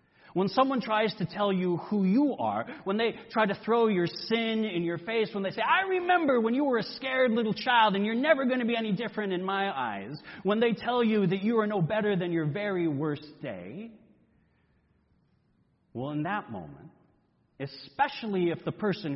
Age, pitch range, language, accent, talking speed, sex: 30-49, 160-225 Hz, English, American, 200 wpm, male